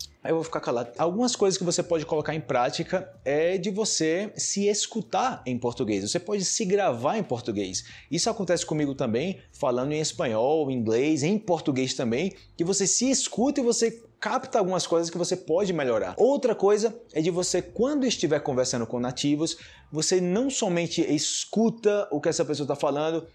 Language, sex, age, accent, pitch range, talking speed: Portuguese, male, 20-39, Brazilian, 135-190 Hz, 180 wpm